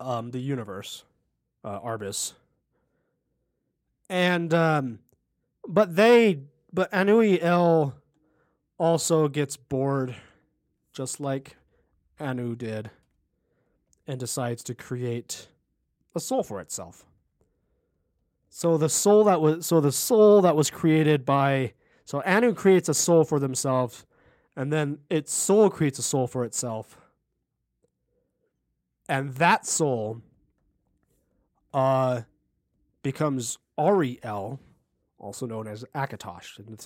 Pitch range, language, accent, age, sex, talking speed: 120-160 Hz, English, American, 30-49, male, 105 wpm